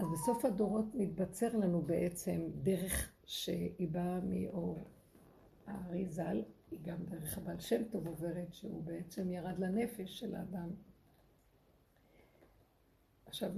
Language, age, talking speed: Hebrew, 50-69, 110 wpm